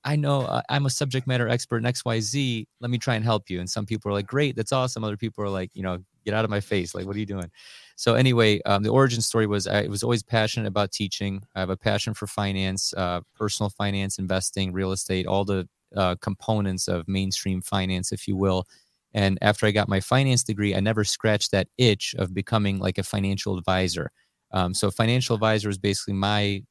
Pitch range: 95-115 Hz